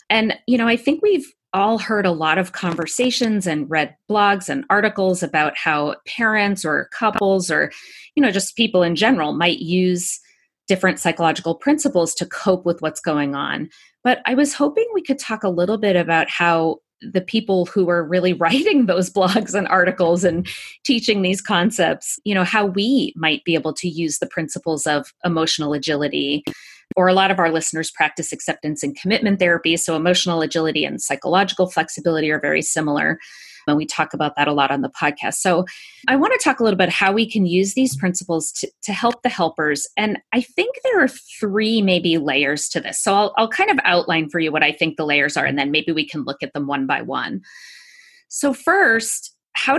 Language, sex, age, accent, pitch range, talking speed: English, female, 30-49, American, 160-220 Hz, 200 wpm